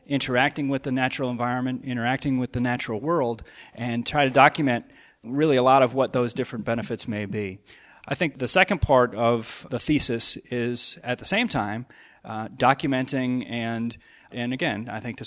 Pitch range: 110-130 Hz